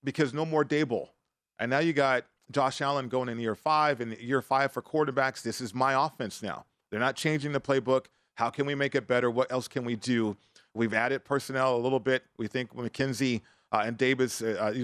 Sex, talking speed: male, 225 wpm